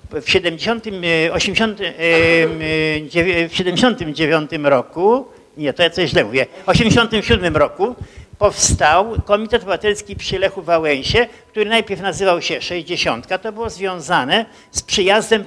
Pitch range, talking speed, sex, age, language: 165-210 Hz, 110 wpm, male, 60-79, Polish